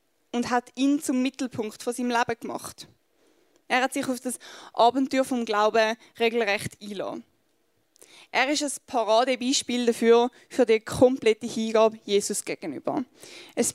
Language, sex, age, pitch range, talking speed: German, female, 20-39, 230-270 Hz, 135 wpm